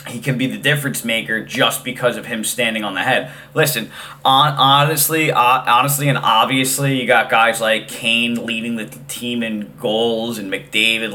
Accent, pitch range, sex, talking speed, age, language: American, 115-140 Hz, male, 165 wpm, 20-39, English